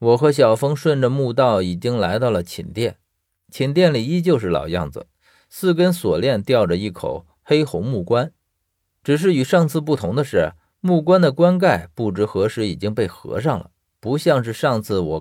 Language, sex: Chinese, male